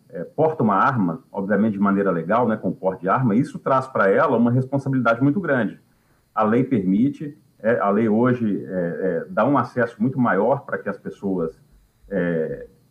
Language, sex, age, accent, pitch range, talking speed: Portuguese, male, 40-59, Brazilian, 105-140 Hz, 185 wpm